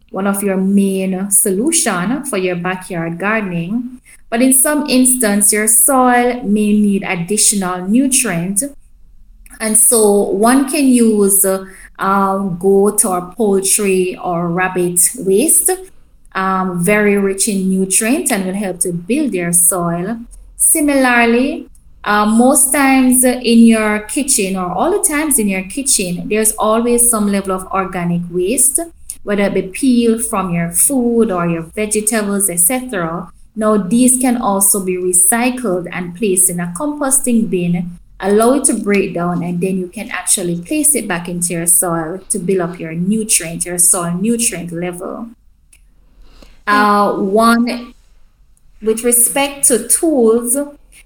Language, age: English, 20-39